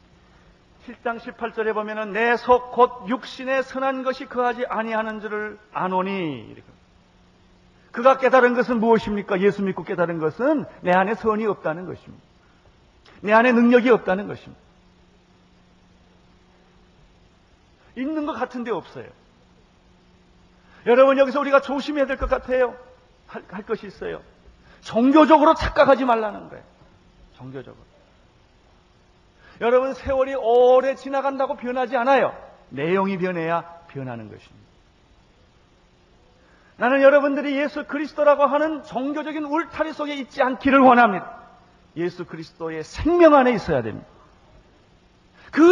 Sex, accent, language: male, native, Korean